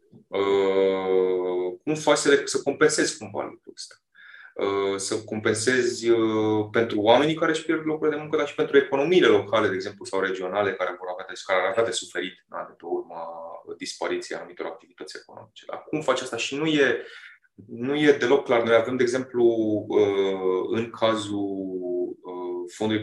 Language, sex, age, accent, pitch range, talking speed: Romanian, male, 20-39, native, 95-140 Hz, 170 wpm